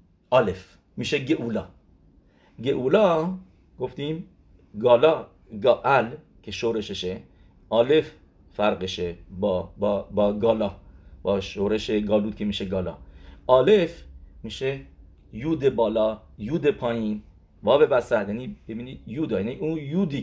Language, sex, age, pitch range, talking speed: English, male, 50-69, 100-155 Hz, 100 wpm